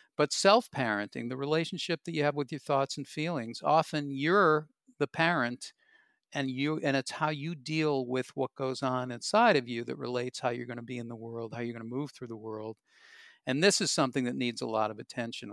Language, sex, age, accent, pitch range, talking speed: English, male, 50-69, American, 115-150 Hz, 225 wpm